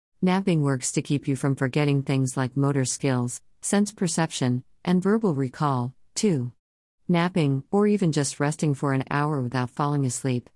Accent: American